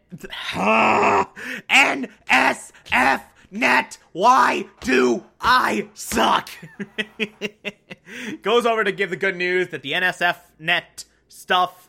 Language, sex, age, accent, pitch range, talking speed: English, male, 30-49, American, 135-195 Hz, 85 wpm